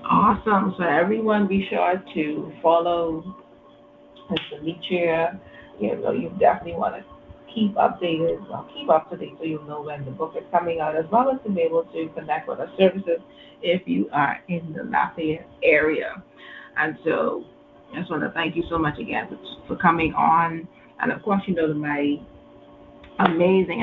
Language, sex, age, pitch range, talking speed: English, female, 30-49, 155-185 Hz, 175 wpm